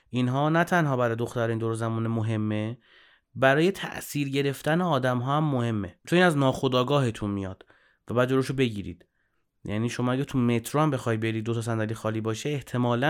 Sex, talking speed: male, 165 wpm